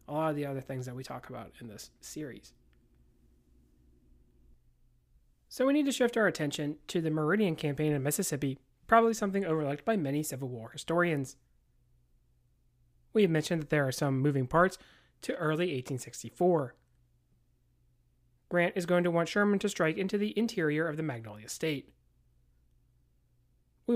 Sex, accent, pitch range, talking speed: male, American, 115-175 Hz, 155 wpm